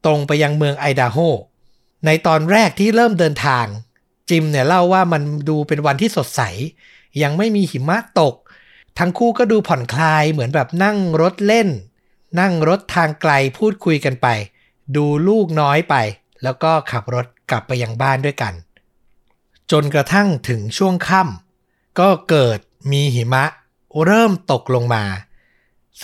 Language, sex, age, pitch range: Thai, male, 60-79, 130-170 Hz